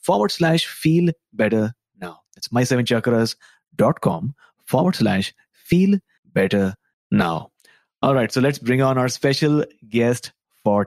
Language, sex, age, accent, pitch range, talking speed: English, male, 30-49, Indian, 110-145 Hz, 120 wpm